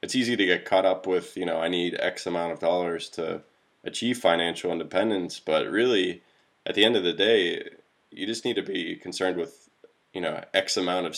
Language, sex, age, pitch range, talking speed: English, male, 20-39, 85-100 Hz, 210 wpm